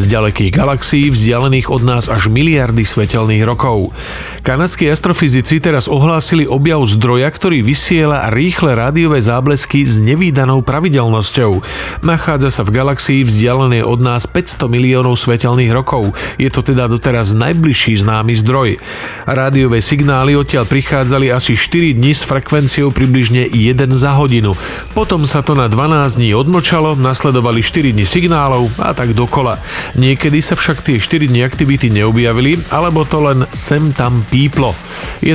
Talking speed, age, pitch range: 145 wpm, 40-59, 115-145 Hz